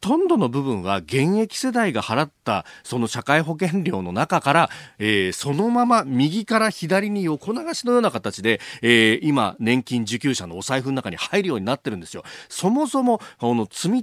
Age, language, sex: 40-59, Japanese, male